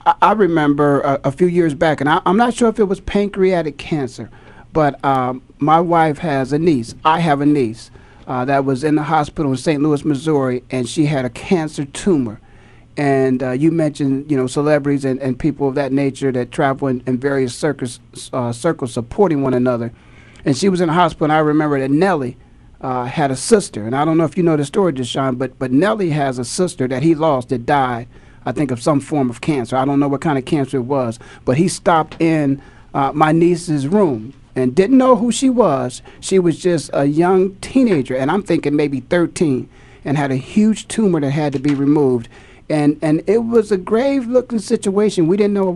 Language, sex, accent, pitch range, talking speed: English, male, American, 130-170 Hz, 220 wpm